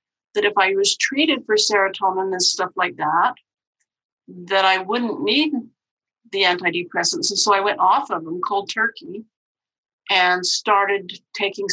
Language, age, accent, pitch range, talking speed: English, 50-69, American, 180-225 Hz, 150 wpm